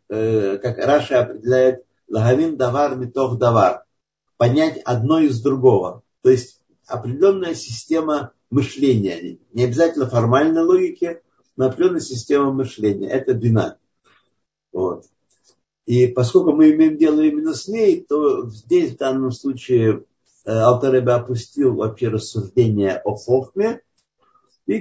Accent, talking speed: native, 115 wpm